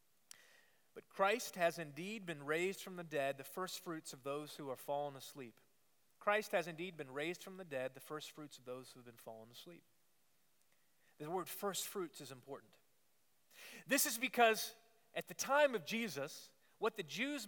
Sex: male